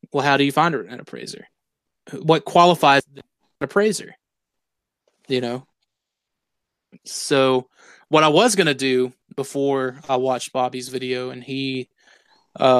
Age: 20-39